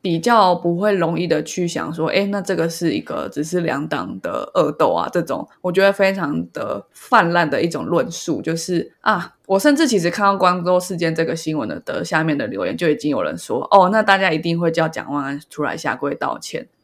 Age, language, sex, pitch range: 20-39, Chinese, female, 155-185 Hz